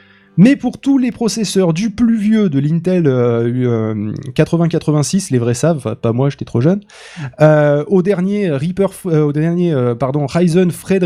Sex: male